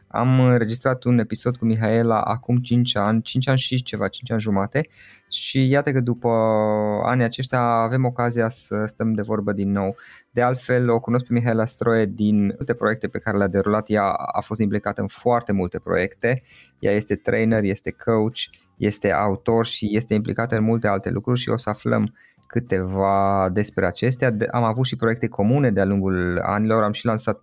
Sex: male